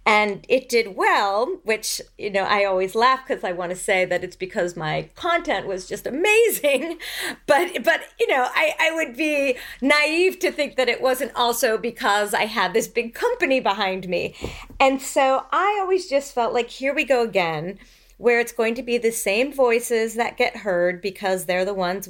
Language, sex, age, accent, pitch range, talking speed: English, female, 40-59, American, 195-260 Hz, 195 wpm